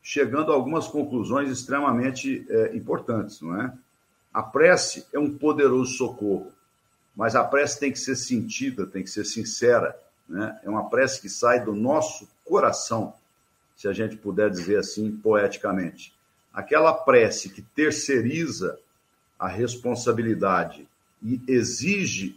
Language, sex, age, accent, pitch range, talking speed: Portuguese, male, 60-79, Brazilian, 105-150 Hz, 125 wpm